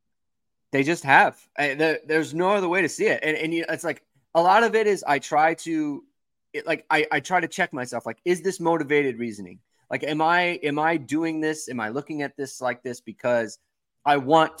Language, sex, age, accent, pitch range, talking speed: English, male, 20-39, American, 115-150 Hz, 210 wpm